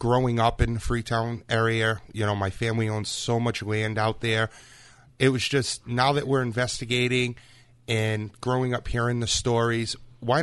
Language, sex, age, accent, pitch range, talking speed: English, male, 30-49, American, 110-130 Hz, 180 wpm